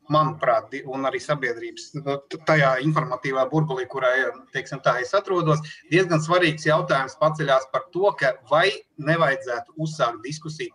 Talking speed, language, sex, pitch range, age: 130 wpm, English, male, 135-175 Hz, 30-49